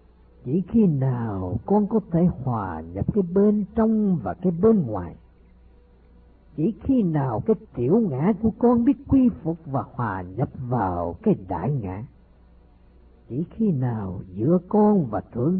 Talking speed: 155 wpm